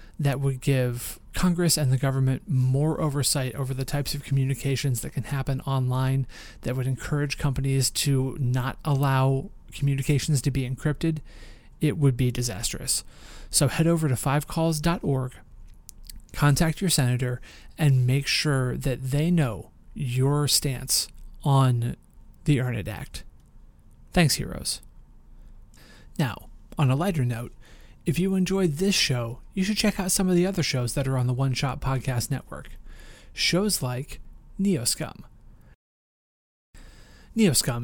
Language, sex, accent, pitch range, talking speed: English, male, American, 125-155 Hz, 135 wpm